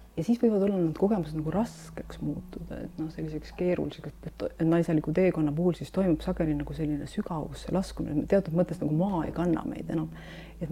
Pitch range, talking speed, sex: 155-180 Hz, 175 wpm, female